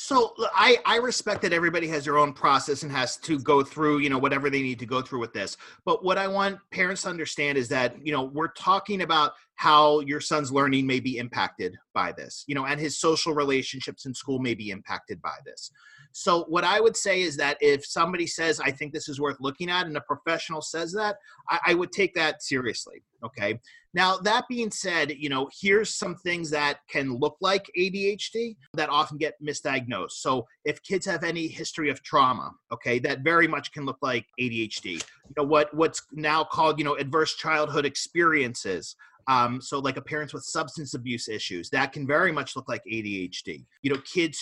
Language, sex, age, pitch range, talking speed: English, male, 30-49, 140-180 Hz, 210 wpm